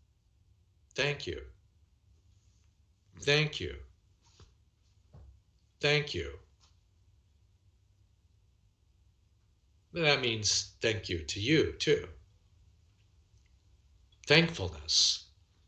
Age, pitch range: 50-69, 95-130 Hz